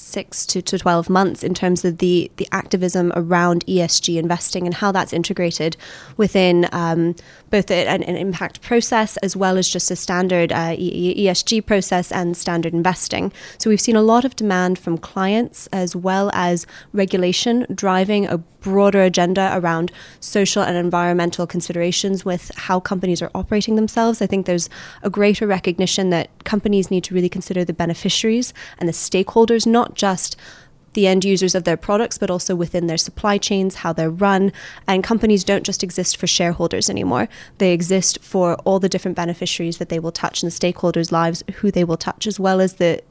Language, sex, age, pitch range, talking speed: English, female, 20-39, 175-195 Hz, 180 wpm